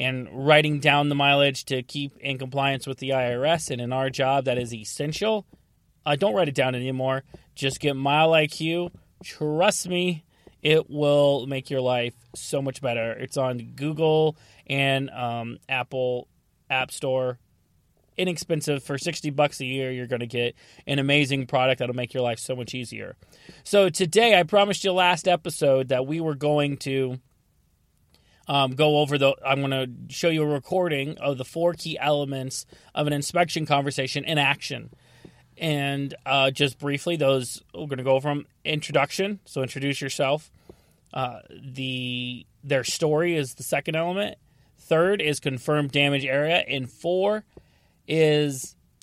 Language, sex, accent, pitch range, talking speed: English, male, American, 130-150 Hz, 160 wpm